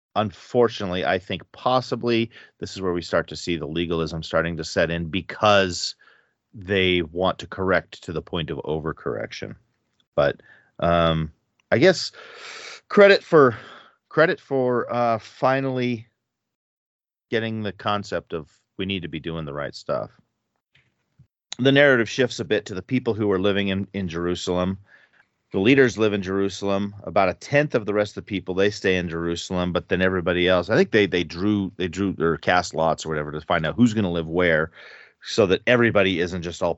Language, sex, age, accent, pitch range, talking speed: English, male, 40-59, American, 85-110 Hz, 180 wpm